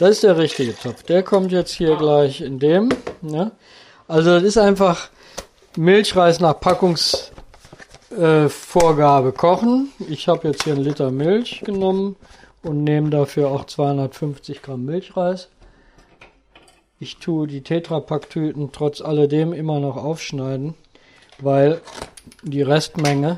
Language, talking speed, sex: German, 125 wpm, male